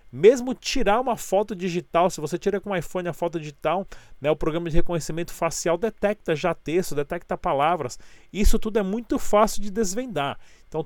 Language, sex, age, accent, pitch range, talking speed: Portuguese, male, 40-59, Brazilian, 160-200 Hz, 180 wpm